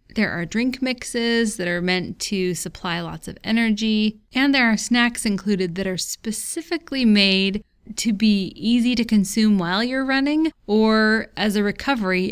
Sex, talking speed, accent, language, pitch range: female, 160 wpm, American, English, 190-245 Hz